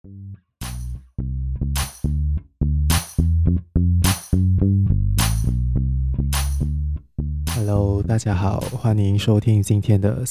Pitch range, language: 95-110 Hz, Chinese